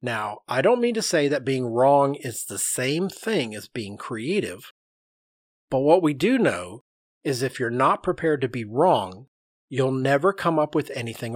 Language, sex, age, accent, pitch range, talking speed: English, male, 40-59, American, 115-145 Hz, 185 wpm